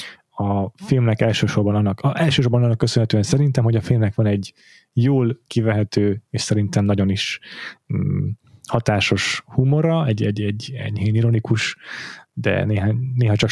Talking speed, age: 145 wpm, 30-49